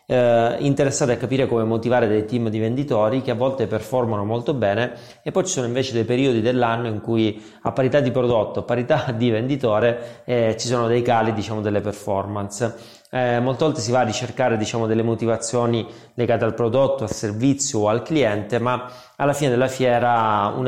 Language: Italian